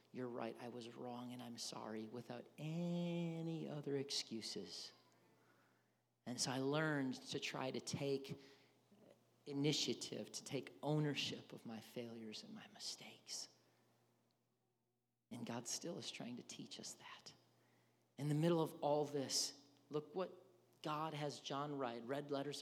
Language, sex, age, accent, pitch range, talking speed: English, male, 40-59, American, 125-155 Hz, 140 wpm